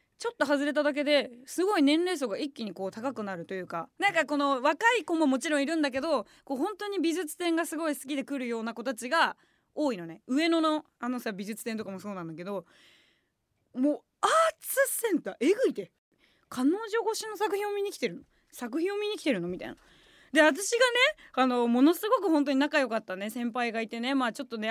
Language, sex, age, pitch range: Japanese, female, 20-39, 235-335 Hz